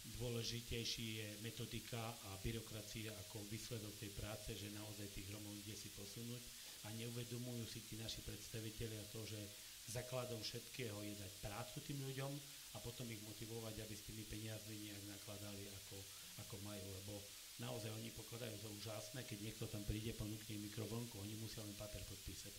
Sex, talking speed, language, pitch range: male, 160 wpm, Slovak, 105-115 Hz